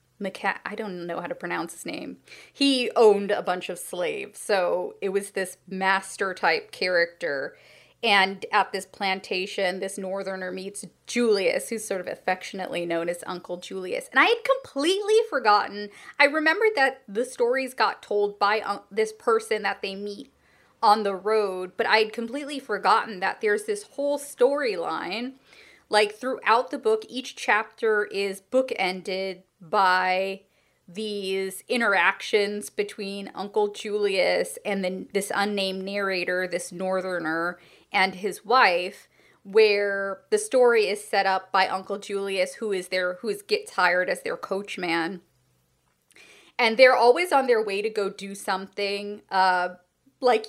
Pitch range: 190-225 Hz